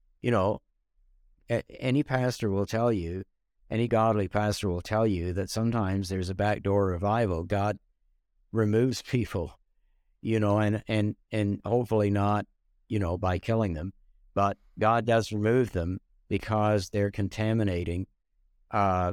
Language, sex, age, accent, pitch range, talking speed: English, male, 60-79, American, 95-115 Hz, 135 wpm